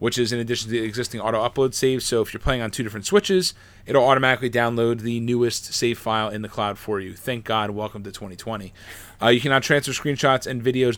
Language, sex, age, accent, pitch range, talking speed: English, male, 20-39, American, 105-130 Hz, 225 wpm